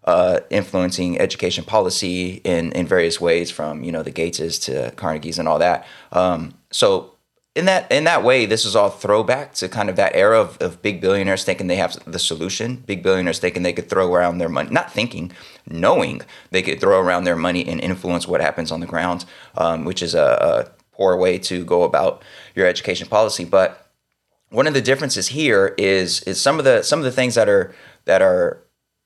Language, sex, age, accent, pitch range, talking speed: English, male, 20-39, American, 90-110 Hz, 205 wpm